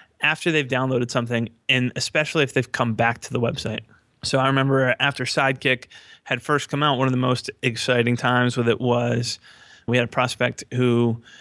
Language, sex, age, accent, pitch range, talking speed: English, male, 20-39, American, 115-130 Hz, 190 wpm